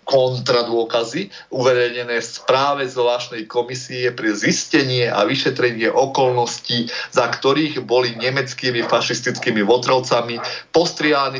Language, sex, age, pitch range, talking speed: Slovak, male, 30-49, 120-140 Hz, 90 wpm